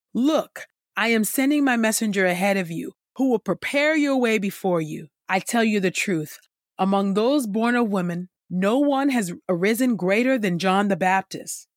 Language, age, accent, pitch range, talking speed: English, 30-49, American, 180-240 Hz, 180 wpm